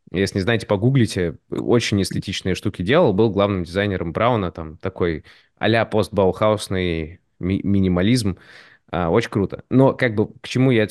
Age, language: 20-39, Russian